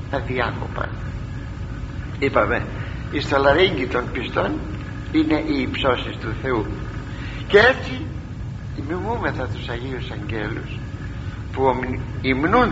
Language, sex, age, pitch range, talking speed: Greek, male, 60-79, 105-125 Hz, 100 wpm